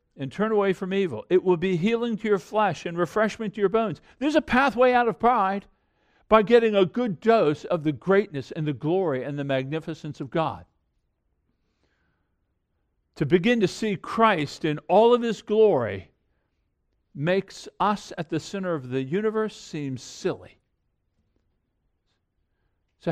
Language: English